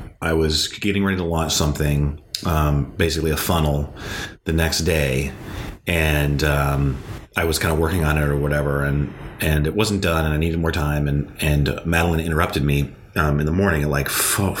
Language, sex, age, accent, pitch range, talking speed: English, male, 30-49, American, 75-90 Hz, 195 wpm